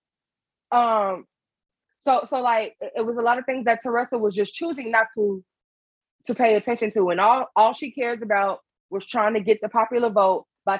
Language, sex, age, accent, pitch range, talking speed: English, female, 20-39, American, 210-265 Hz, 195 wpm